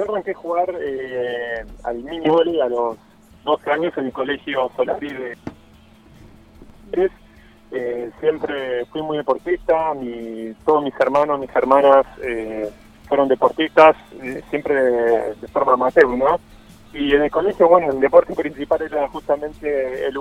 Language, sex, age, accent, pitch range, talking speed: Spanish, male, 30-49, Argentinian, 125-155 Hz, 140 wpm